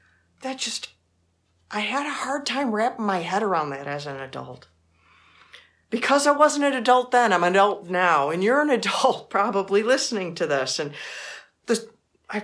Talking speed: 170 wpm